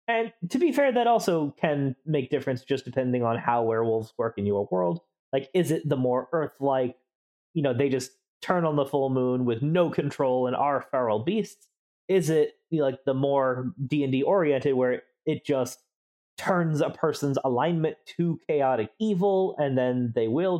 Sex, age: male, 30-49